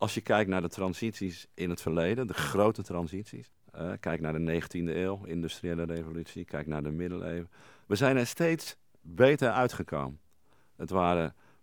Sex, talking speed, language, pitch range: male, 165 wpm, Dutch, 85-110 Hz